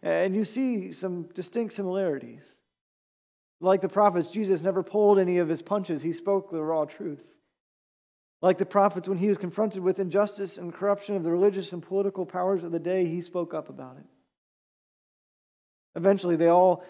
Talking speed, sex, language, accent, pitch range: 175 wpm, male, English, American, 165-205 Hz